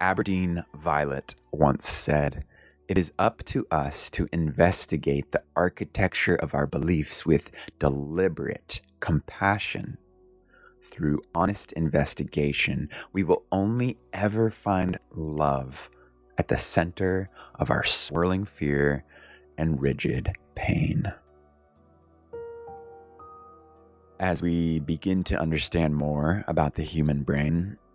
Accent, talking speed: American, 105 wpm